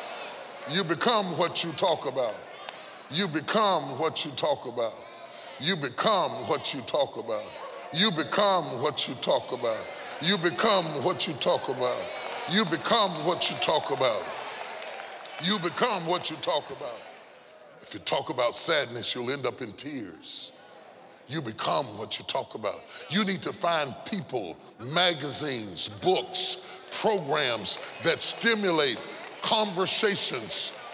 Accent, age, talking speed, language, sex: American, 40-59, 135 wpm, English, female